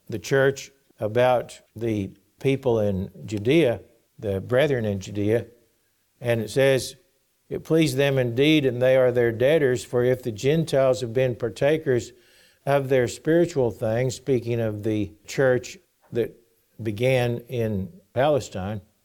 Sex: male